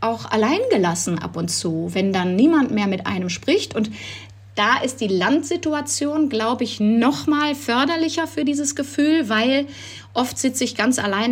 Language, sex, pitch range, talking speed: German, female, 195-260 Hz, 170 wpm